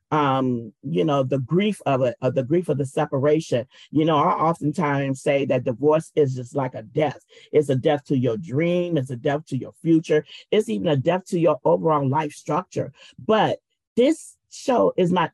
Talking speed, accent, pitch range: 195 wpm, American, 145-200 Hz